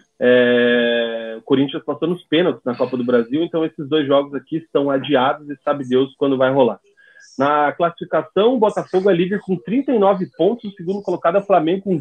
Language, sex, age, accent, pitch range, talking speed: Portuguese, male, 40-59, Brazilian, 145-200 Hz, 195 wpm